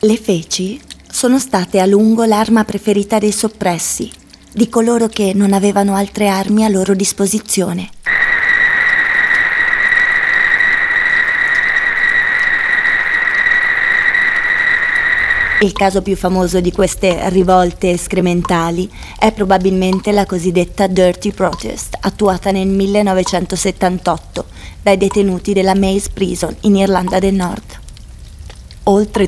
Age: 20-39